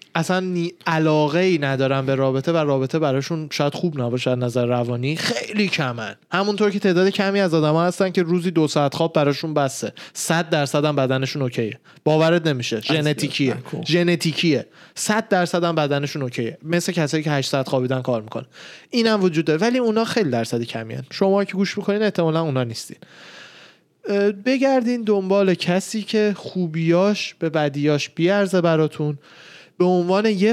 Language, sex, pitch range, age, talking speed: Persian, male, 140-195 Hz, 20-39, 145 wpm